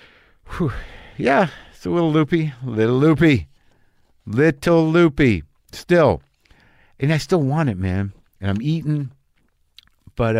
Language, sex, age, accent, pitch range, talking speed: English, male, 50-69, American, 110-160 Hz, 120 wpm